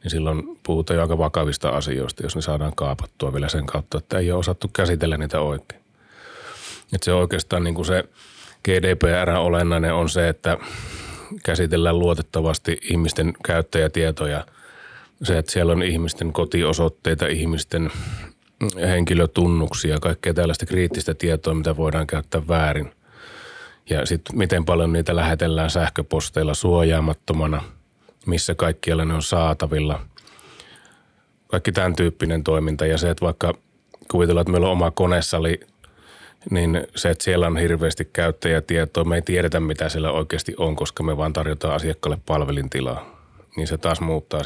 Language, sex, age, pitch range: Finnish, male, 30-49, 80-85 Hz